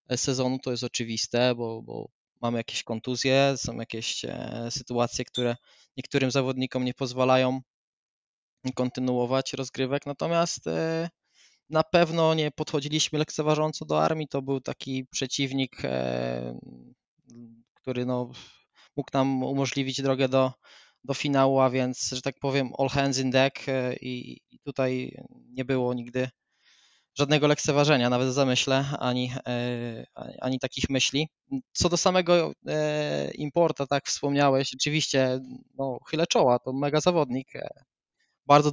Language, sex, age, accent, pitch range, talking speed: Polish, male, 20-39, native, 125-140 Hz, 120 wpm